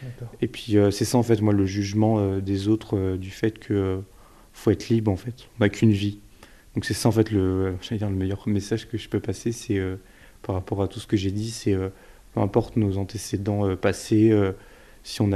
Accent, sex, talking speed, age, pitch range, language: French, male, 245 wpm, 20-39, 100-110 Hz, French